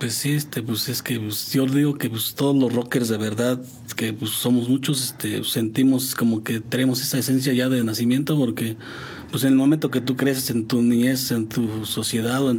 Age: 40-59